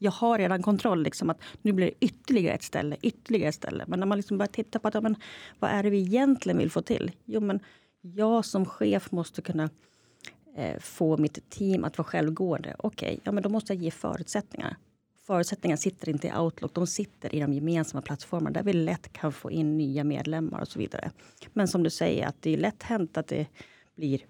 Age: 30-49